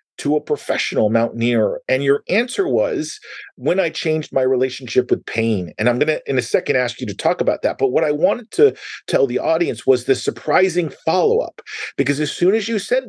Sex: male